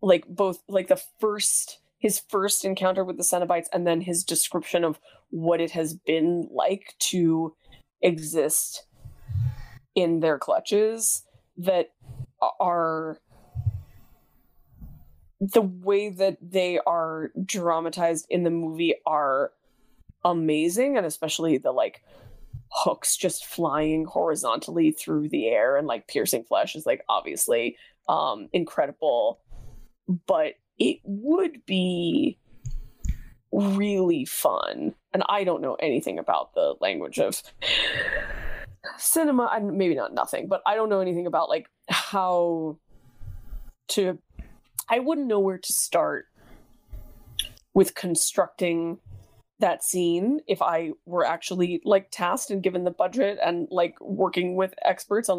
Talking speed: 120 wpm